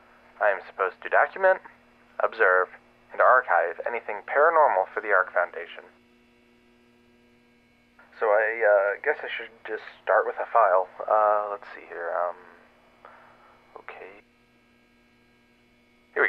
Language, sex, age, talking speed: English, male, 30-49, 120 wpm